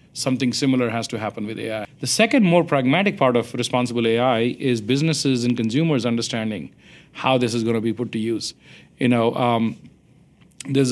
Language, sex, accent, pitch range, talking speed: English, male, Indian, 120-135 Hz, 180 wpm